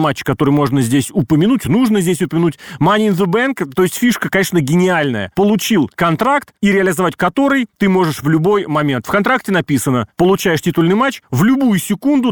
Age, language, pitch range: 30-49, Russian, 145-195 Hz